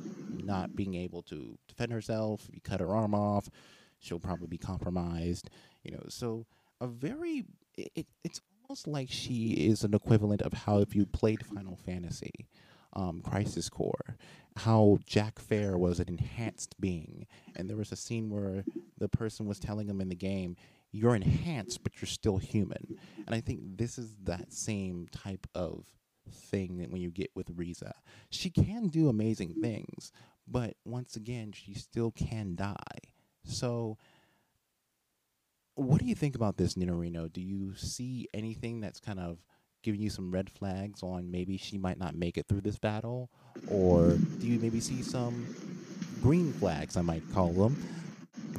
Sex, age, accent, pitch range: male, 30-49, American, 95-115 Hz